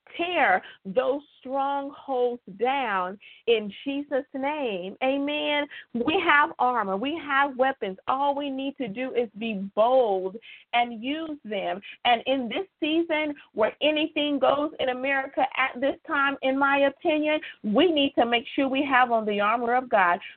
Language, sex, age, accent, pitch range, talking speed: English, female, 40-59, American, 240-290 Hz, 155 wpm